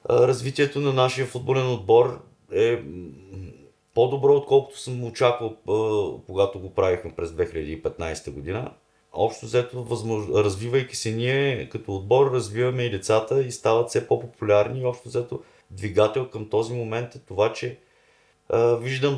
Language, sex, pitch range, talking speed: Bulgarian, male, 95-125 Hz, 130 wpm